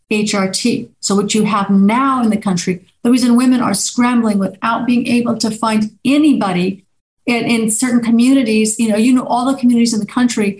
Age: 50-69